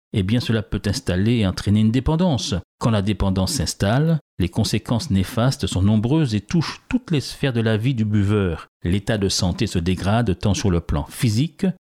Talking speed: 185 wpm